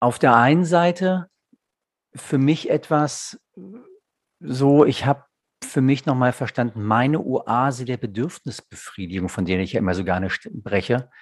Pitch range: 105-140 Hz